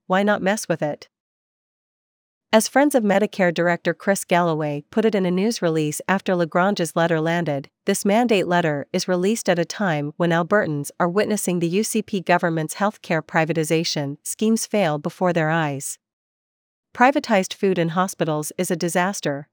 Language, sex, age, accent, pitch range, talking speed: English, female, 40-59, American, 165-200 Hz, 155 wpm